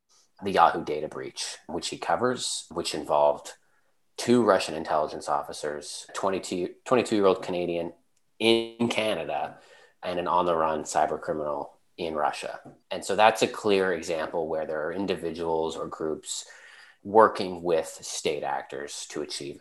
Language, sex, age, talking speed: English, male, 30-49, 135 wpm